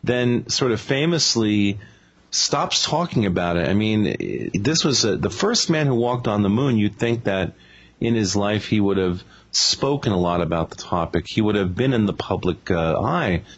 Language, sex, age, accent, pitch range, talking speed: English, male, 40-59, American, 100-145 Hz, 200 wpm